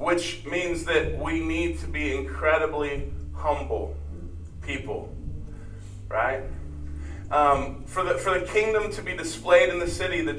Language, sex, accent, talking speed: English, male, American, 135 wpm